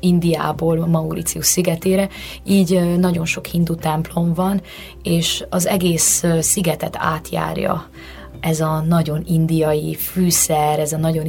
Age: 30-49